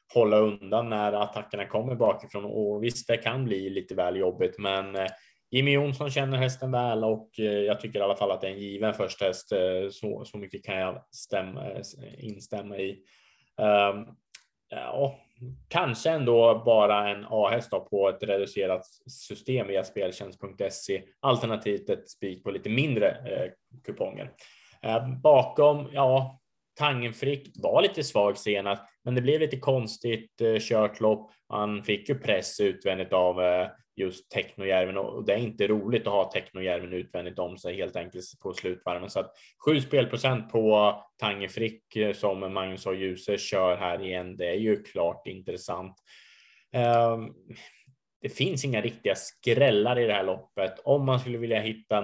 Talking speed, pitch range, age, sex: 160 wpm, 100-125 Hz, 20-39, male